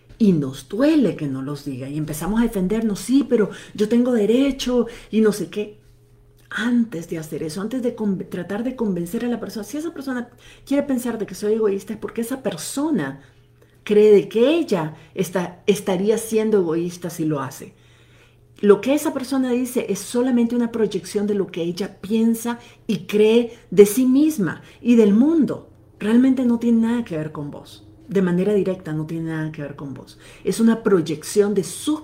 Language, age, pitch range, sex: Spanish, 40-59, 150-220 Hz, female